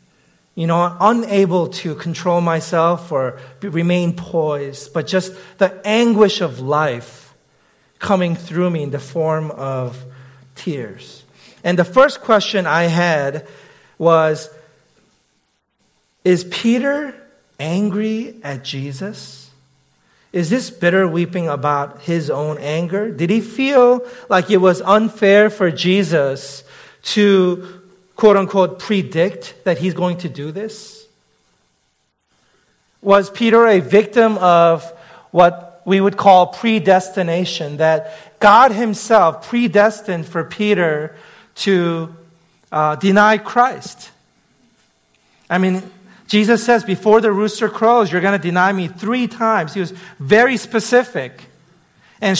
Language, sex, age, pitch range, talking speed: English, male, 40-59, 160-210 Hz, 115 wpm